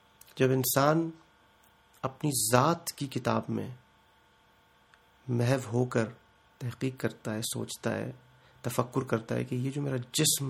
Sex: male